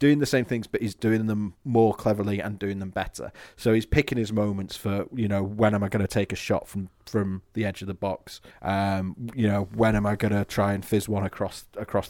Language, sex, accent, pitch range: English, male, British, 100-115 Hz